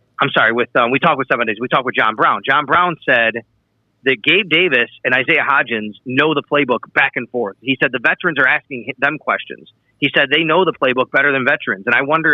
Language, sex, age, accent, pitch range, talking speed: English, male, 30-49, American, 120-165 Hz, 240 wpm